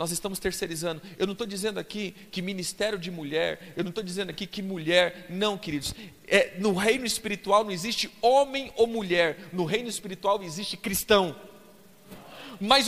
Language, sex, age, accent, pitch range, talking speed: Portuguese, male, 40-59, Brazilian, 215-300 Hz, 165 wpm